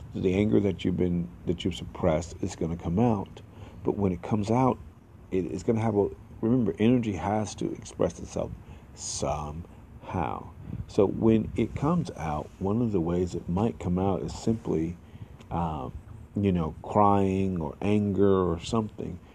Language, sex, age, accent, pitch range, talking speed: English, male, 50-69, American, 85-105 Hz, 170 wpm